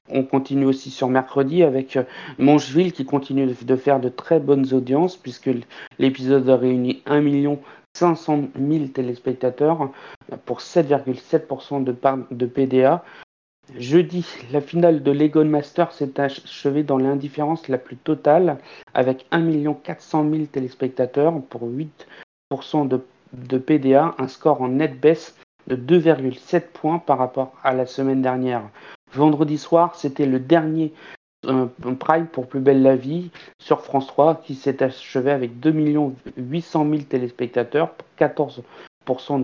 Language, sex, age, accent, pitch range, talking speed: French, male, 40-59, French, 130-155 Hz, 130 wpm